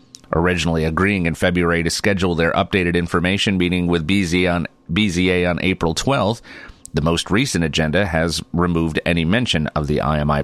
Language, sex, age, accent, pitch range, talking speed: English, male, 30-49, American, 85-100 Hz, 160 wpm